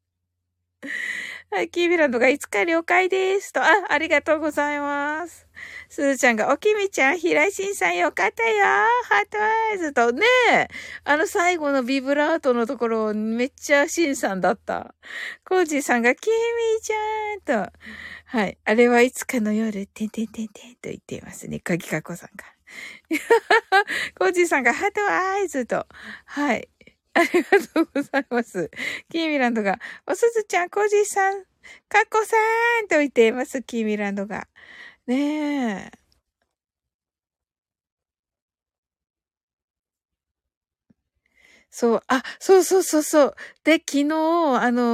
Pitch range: 210-335 Hz